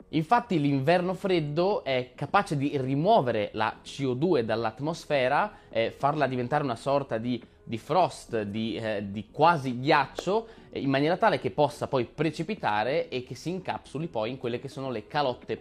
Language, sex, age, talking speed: Italian, male, 20-39, 155 wpm